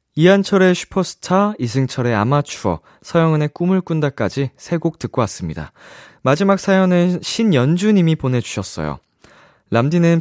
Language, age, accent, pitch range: Korean, 20-39, native, 95-145 Hz